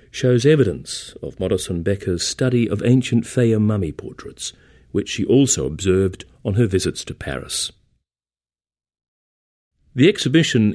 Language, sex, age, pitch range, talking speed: English, male, 40-59, 90-120 Hz, 125 wpm